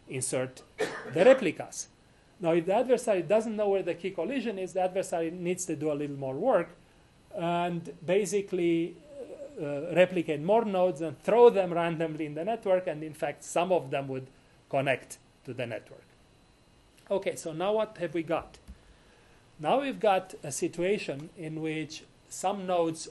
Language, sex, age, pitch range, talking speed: English, male, 40-59, 145-190 Hz, 165 wpm